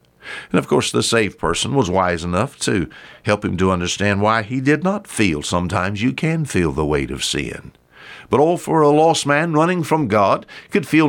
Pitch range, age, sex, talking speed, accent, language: 105-155 Hz, 60-79, male, 205 wpm, American, English